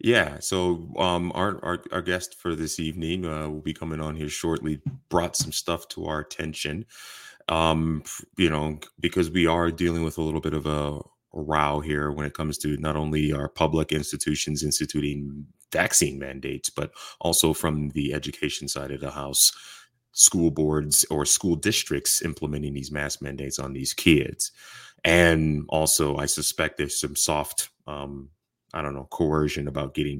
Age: 20-39